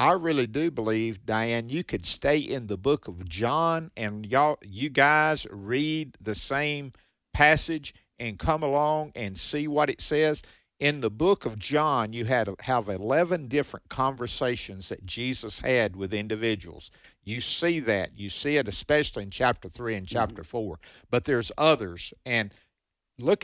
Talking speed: 160 wpm